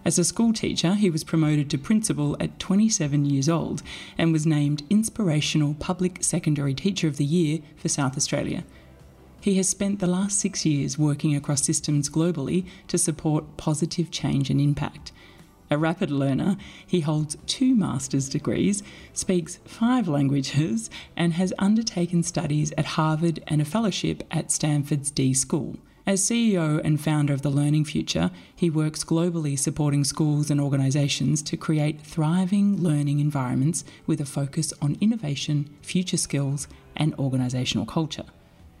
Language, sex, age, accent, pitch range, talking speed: English, female, 30-49, Australian, 145-175 Hz, 150 wpm